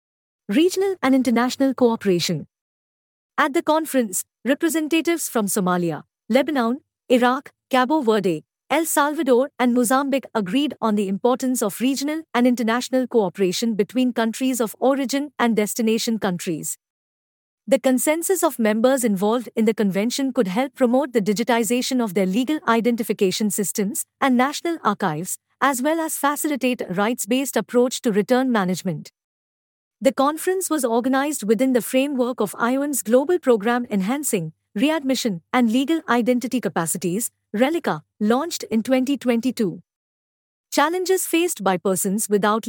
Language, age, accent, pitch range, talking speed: English, 50-69, Indian, 210-275 Hz, 130 wpm